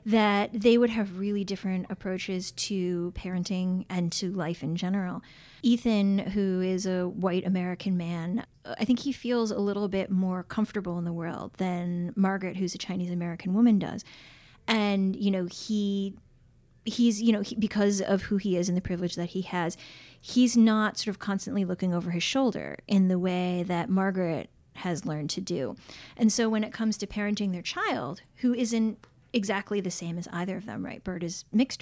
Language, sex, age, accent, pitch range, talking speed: English, female, 30-49, American, 180-210 Hz, 185 wpm